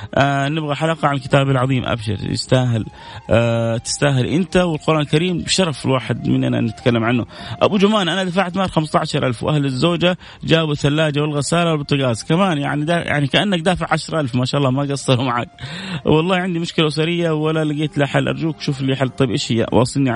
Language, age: Arabic, 30-49